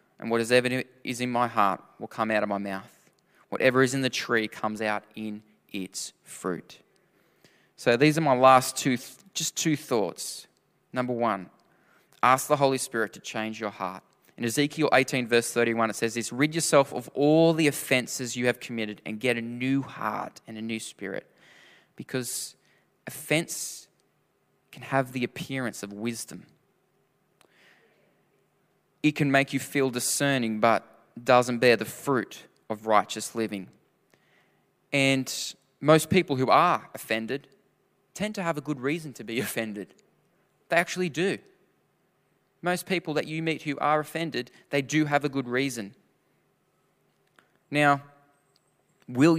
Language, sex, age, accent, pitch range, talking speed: English, male, 20-39, Australian, 110-145 Hz, 150 wpm